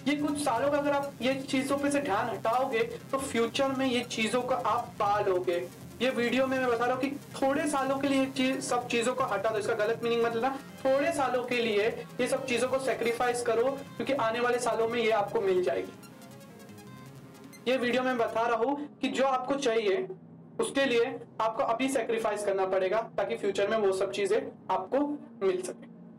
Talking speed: 175 wpm